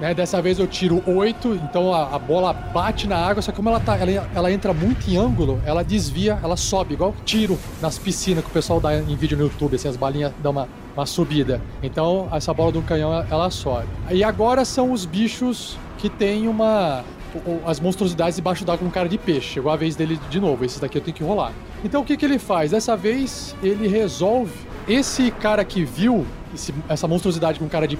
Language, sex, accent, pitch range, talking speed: Portuguese, male, Brazilian, 150-215 Hz, 225 wpm